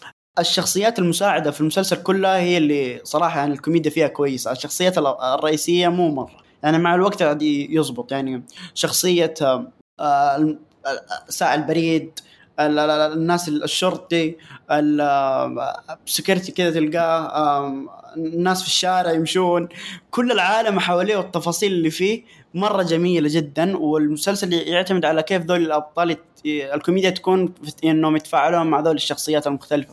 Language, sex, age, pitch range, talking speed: Arabic, male, 20-39, 150-180 Hz, 115 wpm